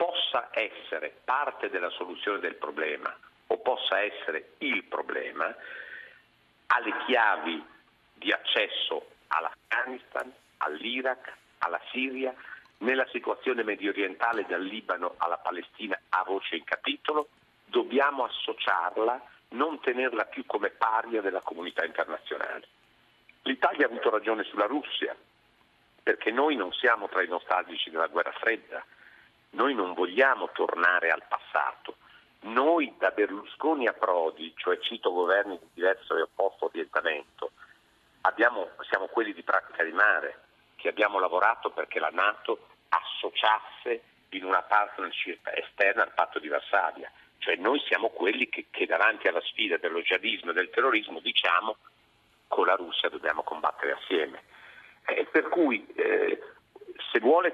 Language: Italian